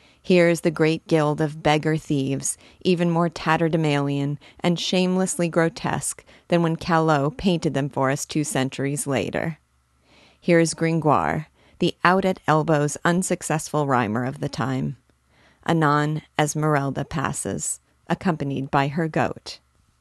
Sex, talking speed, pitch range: female, 125 wpm, 135-170 Hz